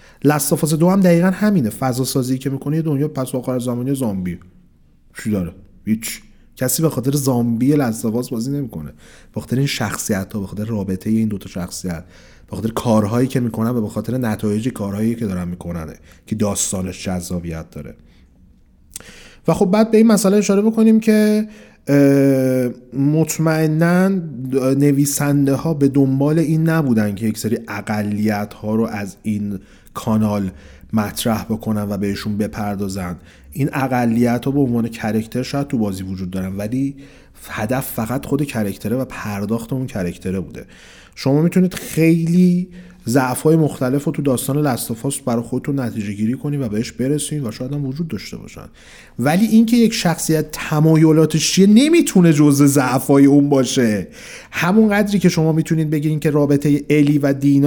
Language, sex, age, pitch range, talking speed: Persian, male, 30-49, 105-150 Hz, 155 wpm